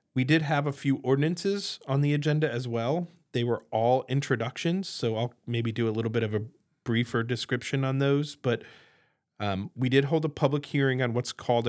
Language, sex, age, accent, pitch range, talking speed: English, male, 40-59, American, 110-130 Hz, 200 wpm